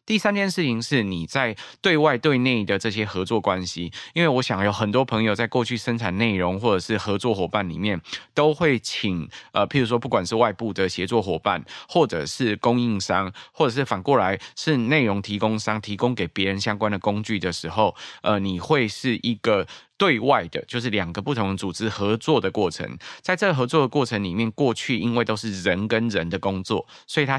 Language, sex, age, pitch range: Chinese, male, 20-39, 95-120 Hz